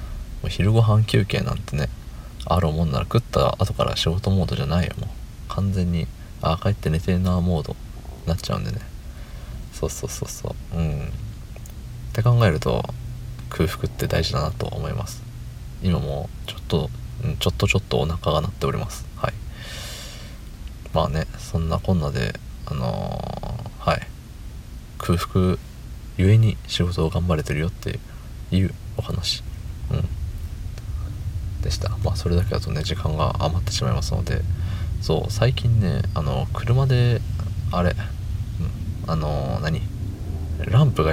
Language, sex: Japanese, male